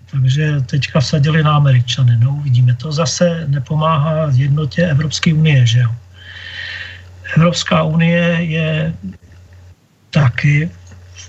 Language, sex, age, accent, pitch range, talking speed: Czech, male, 40-59, native, 120-155 Hz, 105 wpm